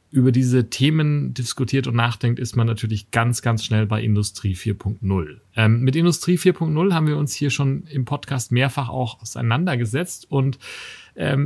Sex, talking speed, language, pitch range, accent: male, 160 wpm, German, 120-150 Hz, German